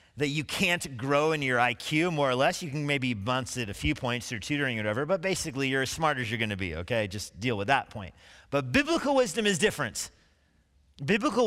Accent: American